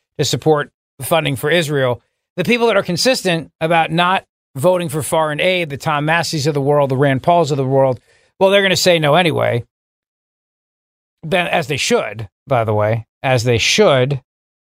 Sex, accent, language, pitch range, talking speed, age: male, American, English, 150-185 Hz, 180 wpm, 40-59